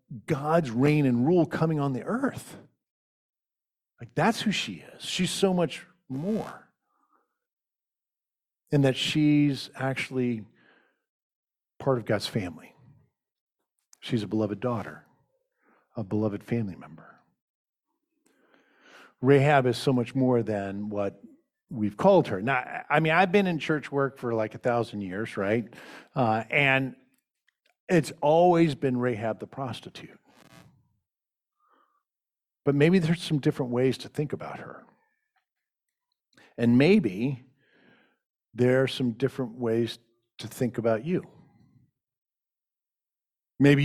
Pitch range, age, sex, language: 120-160 Hz, 50-69, male, English